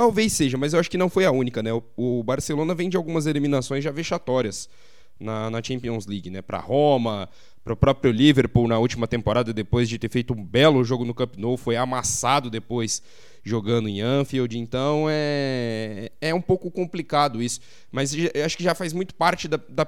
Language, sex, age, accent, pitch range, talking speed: Portuguese, male, 20-39, Brazilian, 120-155 Hz, 200 wpm